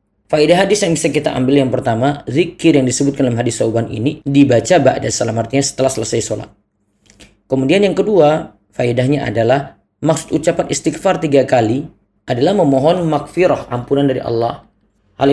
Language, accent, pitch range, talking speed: Indonesian, native, 120-160 Hz, 150 wpm